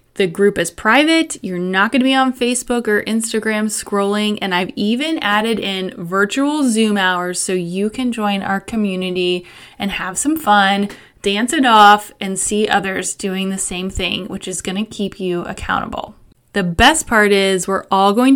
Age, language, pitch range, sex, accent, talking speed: 20-39, English, 190-235 Hz, female, American, 185 wpm